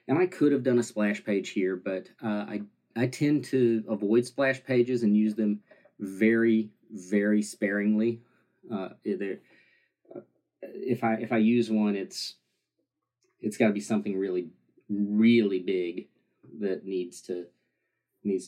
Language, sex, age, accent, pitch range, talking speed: English, male, 30-49, American, 95-120 Hz, 145 wpm